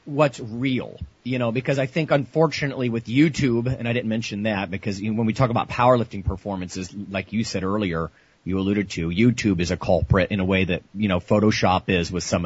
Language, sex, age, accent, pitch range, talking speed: English, male, 40-59, American, 100-130 Hz, 215 wpm